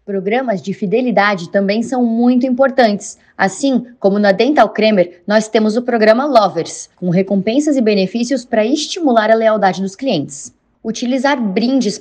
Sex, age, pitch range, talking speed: female, 20-39, 190-245 Hz, 145 wpm